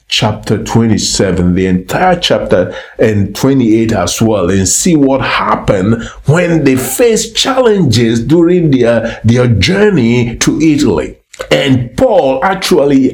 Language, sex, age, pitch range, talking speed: English, male, 50-69, 100-140 Hz, 120 wpm